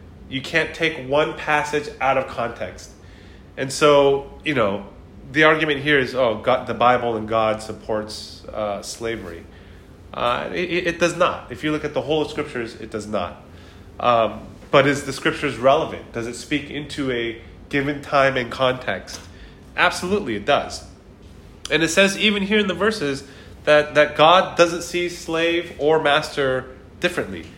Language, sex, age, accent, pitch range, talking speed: English, male, 30-49, American, 105-145 Hz, 165 wpm